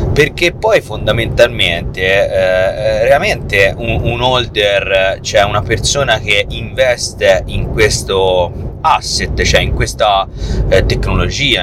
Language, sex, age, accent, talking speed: Italian, male, 30-49, native, 110 wpm